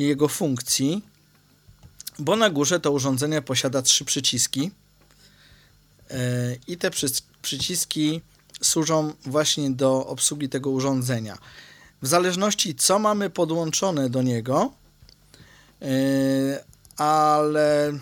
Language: Polish